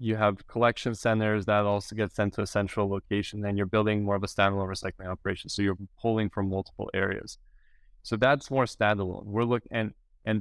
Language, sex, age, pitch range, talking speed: English, male, 20-39, 100-115 Hz, 200 wpm